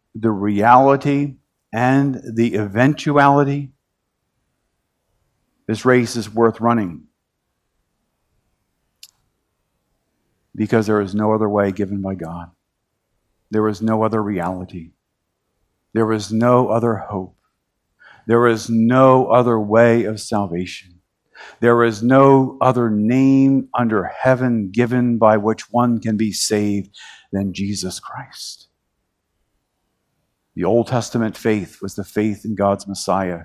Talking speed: 115 wpm